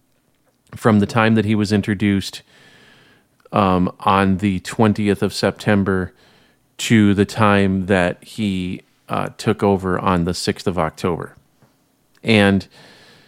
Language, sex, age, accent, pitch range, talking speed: English, male, 40-59, American, 95-115 Hz, 120 wpm